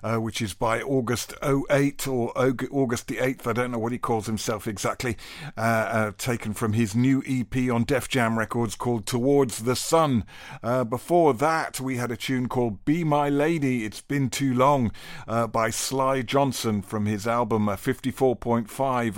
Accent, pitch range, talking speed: British, 110-130 Hz, 175 wpm